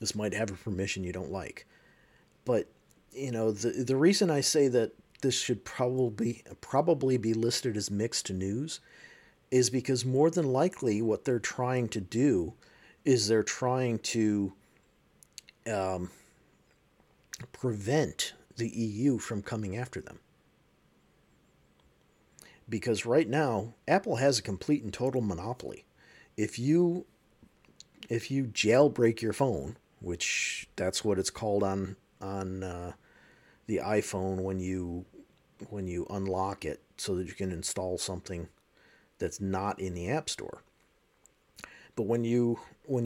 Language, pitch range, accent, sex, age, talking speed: English, 95-125 Hz, American, male, 50-69, 135 wpm